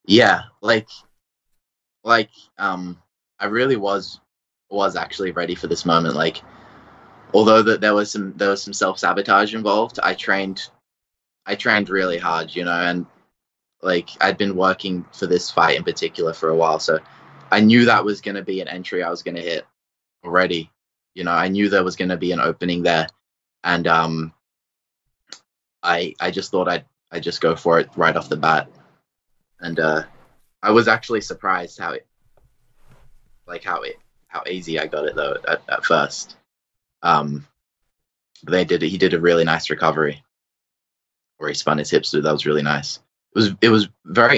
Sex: male